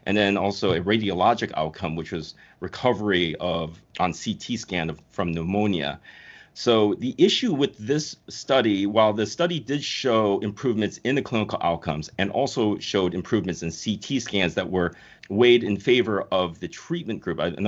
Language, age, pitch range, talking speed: English, 30-49, 95-115 Hz, 165 wpm